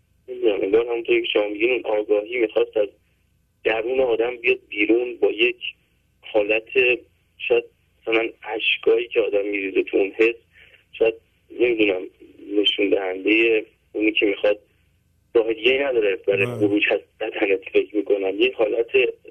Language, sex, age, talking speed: English, male, 40-59, 125 wpm